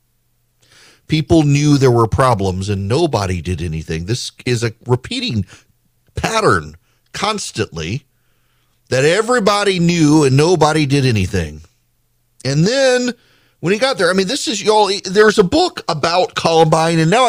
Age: 40-59